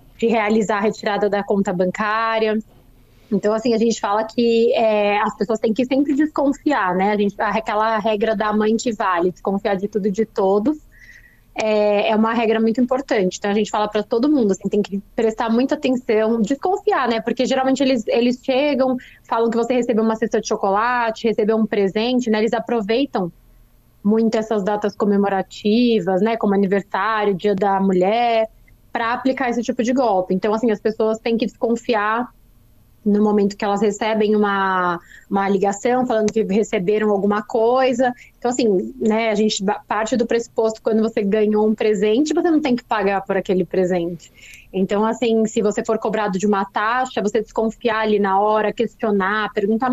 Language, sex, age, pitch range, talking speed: Portuguese, female, 20-39, 205-240 Hz, 180 wpm